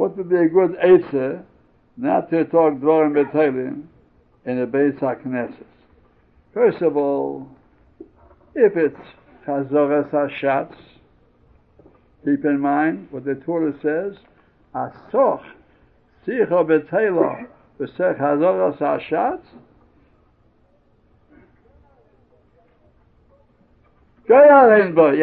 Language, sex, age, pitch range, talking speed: English, male, 60-79, 130-200 Hz, 75 wpm